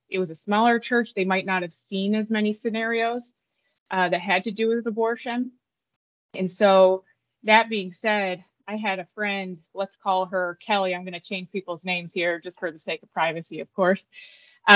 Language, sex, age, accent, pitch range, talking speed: English, female, 20-39, American, 180-205 Hz, 200 wpm